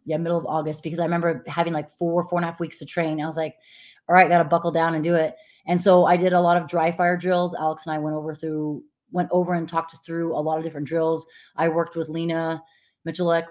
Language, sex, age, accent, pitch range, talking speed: English, female, 20-39, American, 155-170 Hz, 265 wpm